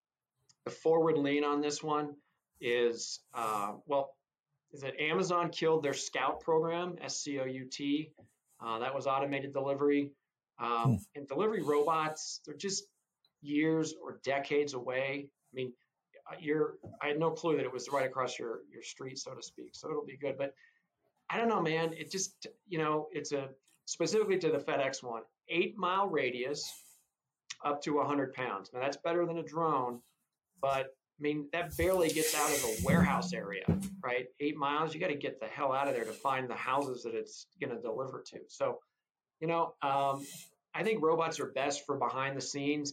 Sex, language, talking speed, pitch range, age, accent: male, English, 170 wpm, 135-165 Hz, 40-59, American